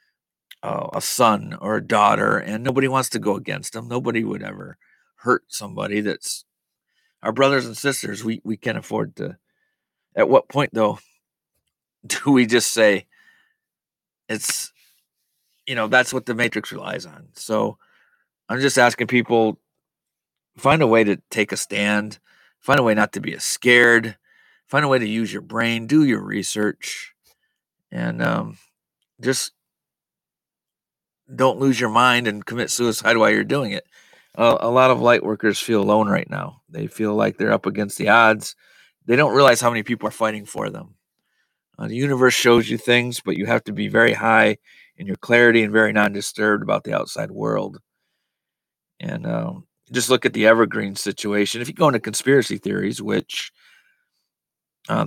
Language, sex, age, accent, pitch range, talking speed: English, male, 40-59, American, 105-130 Hz, 170 wpm